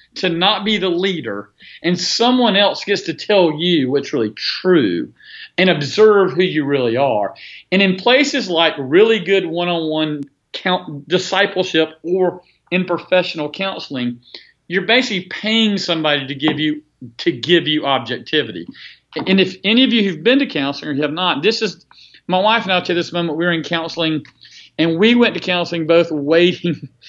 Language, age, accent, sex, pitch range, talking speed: English, 40-59, American, male, 150-185 Hz, 170 wpm